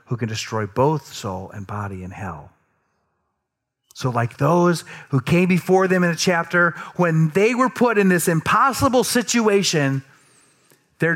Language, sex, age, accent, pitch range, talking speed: English, male, 40-59, American, 135-205 Hz, 150 wpm